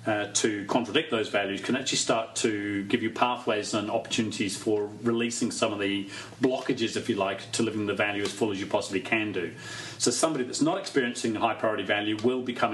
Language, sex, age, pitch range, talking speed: English, male, 40-59, 105-125 Hz, 205 wpm